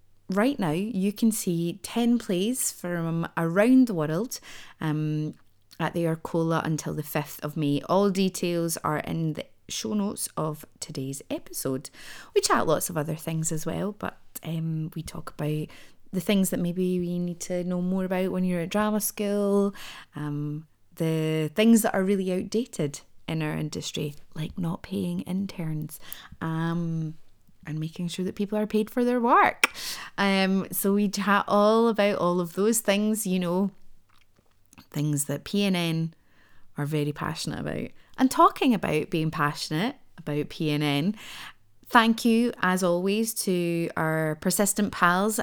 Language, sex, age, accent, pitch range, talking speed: English, female, 20-39, British, 160-205 Hz, 155 wpm